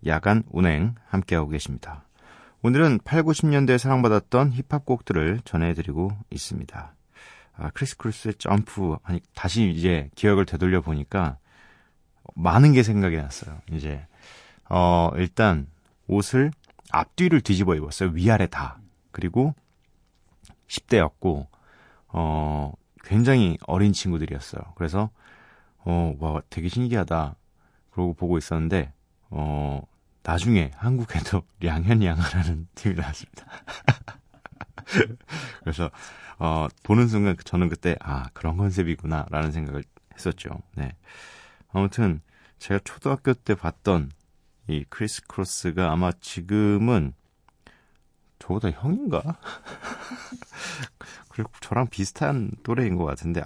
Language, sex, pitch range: Korean, male, 80-110 Hz